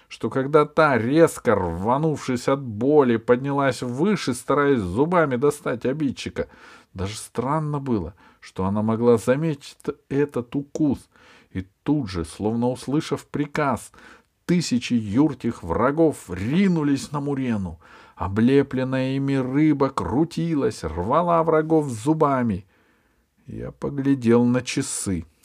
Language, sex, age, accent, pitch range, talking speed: Russian, male, 50-69, native, 95-145 Hz, 105 wpm